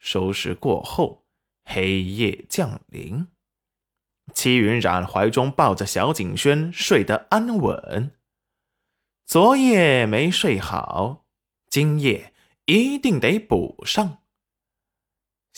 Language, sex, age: Chinese, male, 20-39